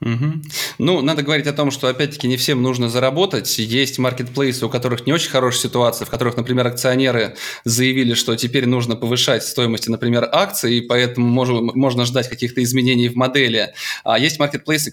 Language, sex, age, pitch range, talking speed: Russian, male, 20-39, 115-140 Hz, 175 wpm